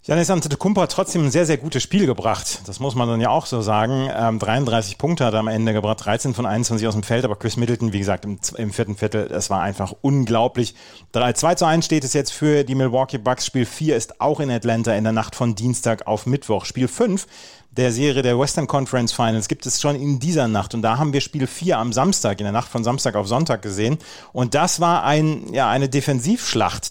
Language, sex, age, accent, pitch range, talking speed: German, male, 30-49, German, 115-145 Hz, 230 wpm